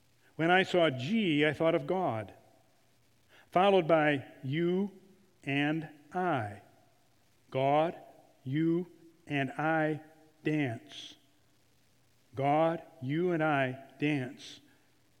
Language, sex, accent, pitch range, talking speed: English, male, American, 130-160 Hz, 90 wpm